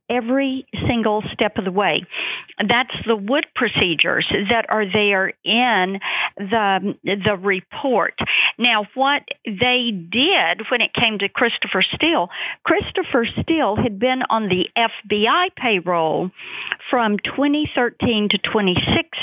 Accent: American